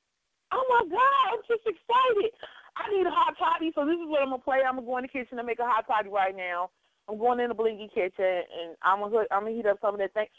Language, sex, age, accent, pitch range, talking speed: English, female, 30-49, American, 215-305 Hz, 275 wpm